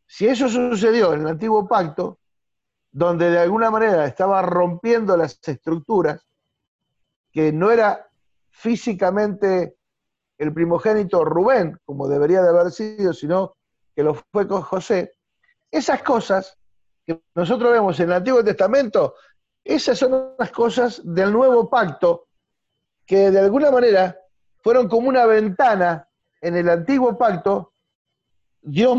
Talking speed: 130 wpm